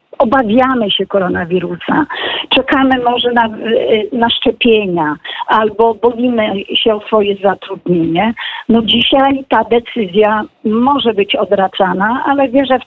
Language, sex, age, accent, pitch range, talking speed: Polish, female, 50-69, native, 210-275 Hz, 110 wpm